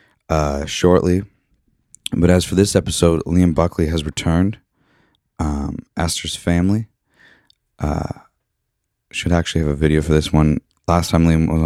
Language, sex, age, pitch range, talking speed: English, male, 20-39, 75-90 Hz, 135 wpm